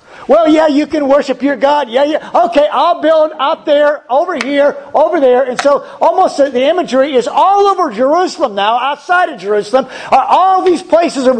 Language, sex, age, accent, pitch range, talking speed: English, male, 50-69, American, 210-285 Hz, 190 wpm